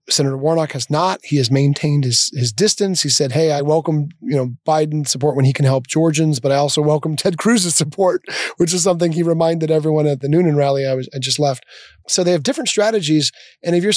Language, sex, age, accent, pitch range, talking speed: English, male, 30-49, American, 110-165 Hz, 230 wpm